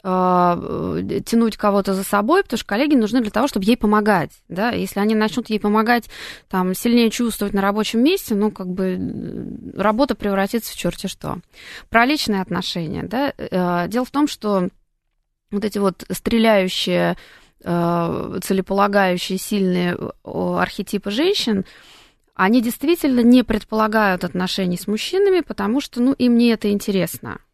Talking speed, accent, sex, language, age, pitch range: 130 wpm, native, female, Russian, 20-39, 190-240 Hz